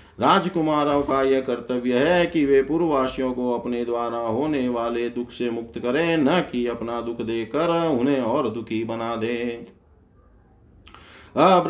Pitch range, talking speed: 115-150 Hz, 140 wpm